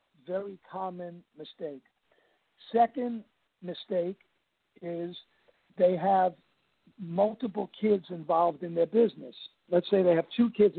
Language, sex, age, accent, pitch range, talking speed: English, male, 60-79, American, 175-205 Hz, 110 wpm